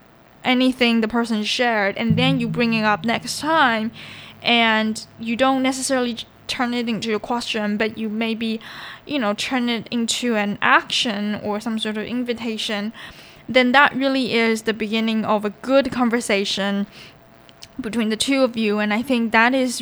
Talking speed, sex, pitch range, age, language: 170 wpm, female, 220-260 Hz, 10-29, English